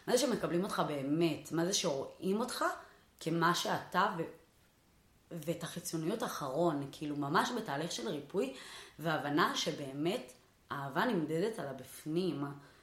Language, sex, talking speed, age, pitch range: Hebrew, female, 120 wpm, 20-39, 155-200 Hz